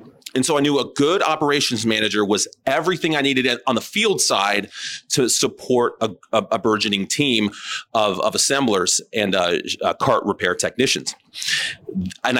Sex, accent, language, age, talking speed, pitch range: male, American, English, 30-49, 160 wpm, 105-130 Hz